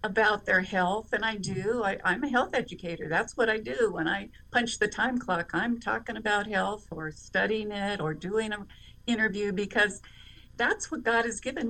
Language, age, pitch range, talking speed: English, 50-69, 210-270 Hz, 190 wpm